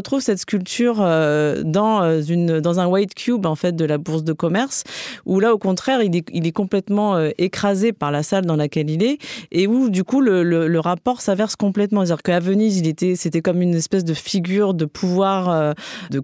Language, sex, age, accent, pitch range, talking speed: French, female, 30-49, French, 170-210 Hz, 215 wpm